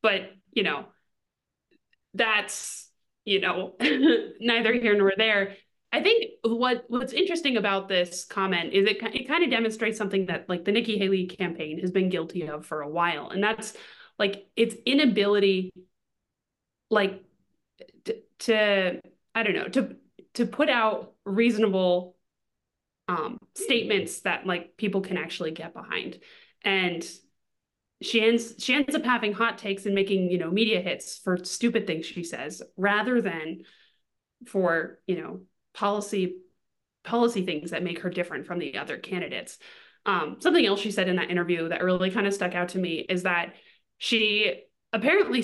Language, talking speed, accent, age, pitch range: English, 155 wpm, American, 20-39, 180-225 Hz